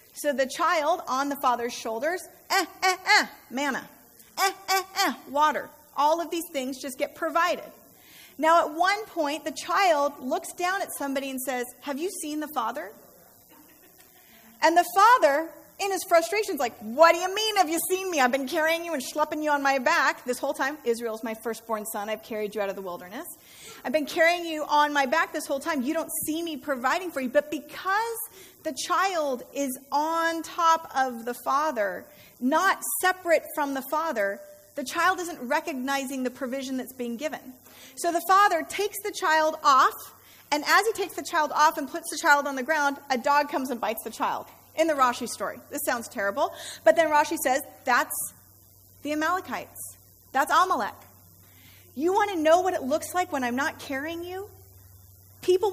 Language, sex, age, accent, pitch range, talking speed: English, female, 40-59, American, 265-335 Hz, 195 wpm